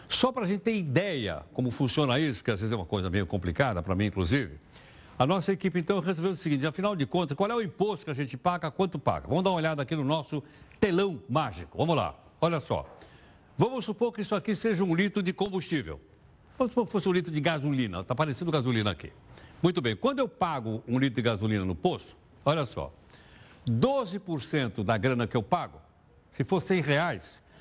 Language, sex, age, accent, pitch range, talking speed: Portuguese, male, 60-79, Brazilian, 120-190 Hz, 215 wpm